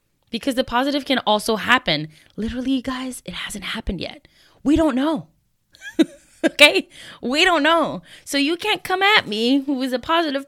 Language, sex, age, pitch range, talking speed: English, female, 20-39, 190-300 Hz, 170 wpm